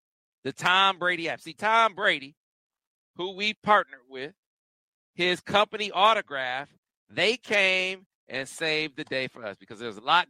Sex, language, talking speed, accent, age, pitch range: male, English, 150 wpm, American, 40-59, 150-200 Hz